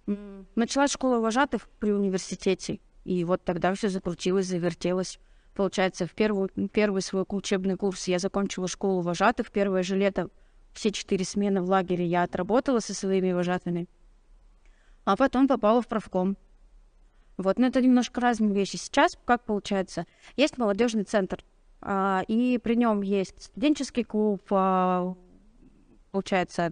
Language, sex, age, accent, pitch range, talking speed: Russian, female, 20-39, native, 185-215 Hz, 130 wpm